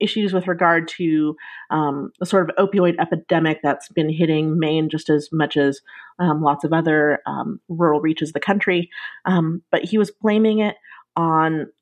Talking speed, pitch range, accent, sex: 180 wpm, 150-185 Hz, American, female